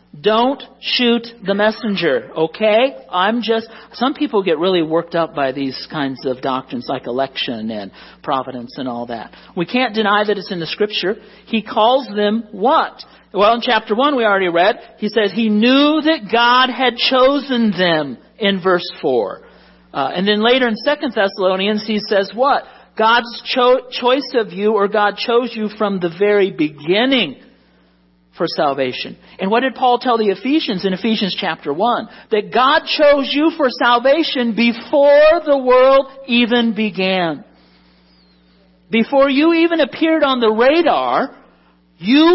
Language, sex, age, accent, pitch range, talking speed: English, male, 50-69, American, 170-245 Hz, 155 wpm